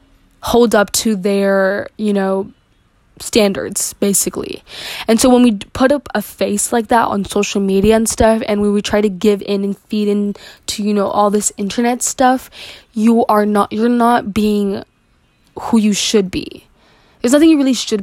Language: English